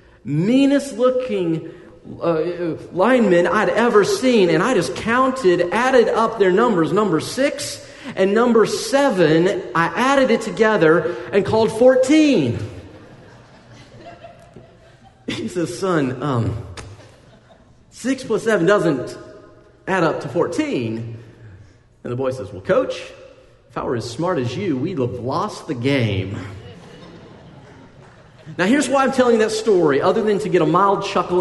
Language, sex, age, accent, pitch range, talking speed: English, male, 40-59, American, 155-255 Hz, 140 wpm